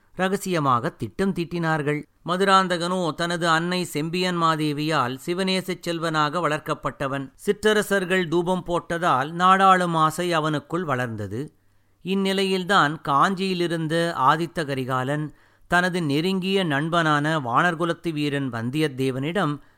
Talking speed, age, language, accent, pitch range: 80 wpm, 50-69, Tamil, native, 140-180 Hz